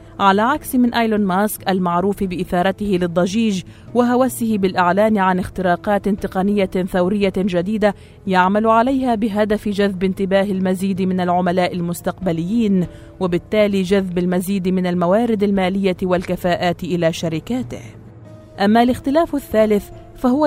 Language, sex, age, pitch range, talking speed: Arabic, female, 30-49, 180-210 Hz, 110 wpm